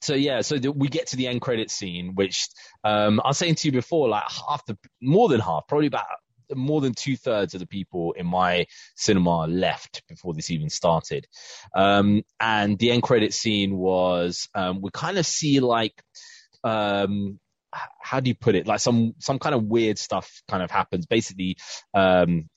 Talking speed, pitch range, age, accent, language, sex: 190 wpm, 95-130 Hz, 20-39, British, English, male